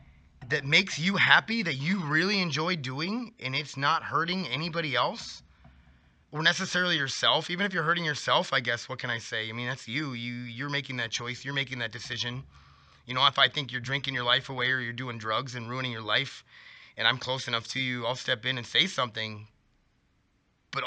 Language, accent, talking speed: English, American, 210 wpm